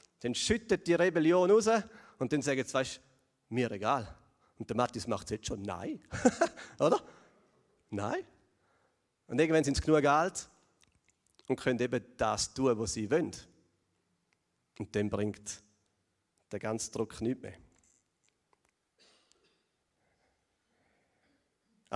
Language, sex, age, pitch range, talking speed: German, male, 40-59, 110-155 Hz, 120 wpm